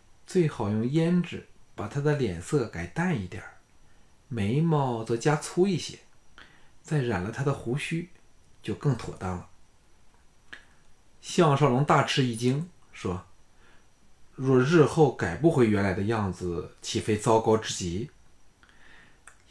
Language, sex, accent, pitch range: Chinese, male, native, 100-140 Hz